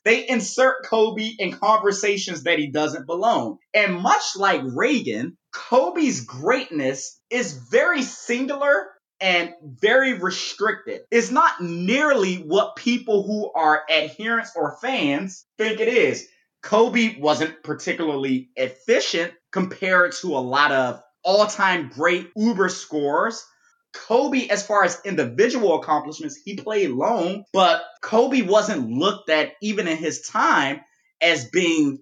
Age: 30-49